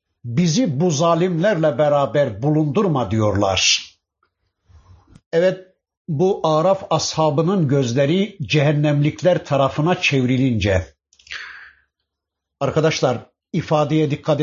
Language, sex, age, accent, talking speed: Turkish, male, 60-79, native, 70 wpm